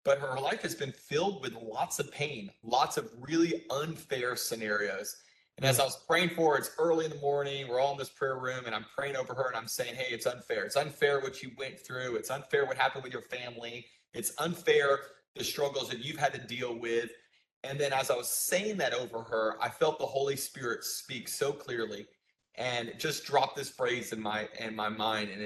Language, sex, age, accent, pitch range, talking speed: English, male, 30-49, American, 115-145 Hz, 220 wpm